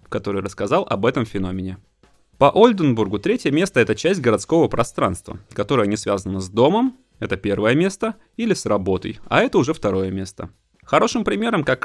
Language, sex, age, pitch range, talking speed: Russian, male, 20-39, 105-145 Hz, 160 wpm